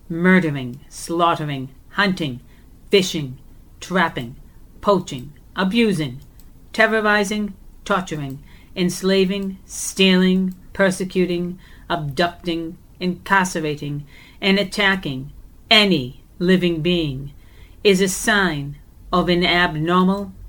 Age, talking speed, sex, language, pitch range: 40-59, 75 wpm, female, English, 145-195 Hz